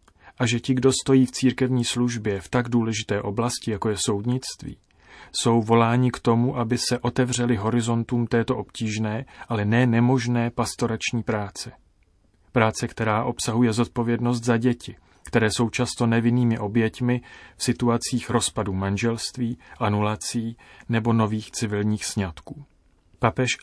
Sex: male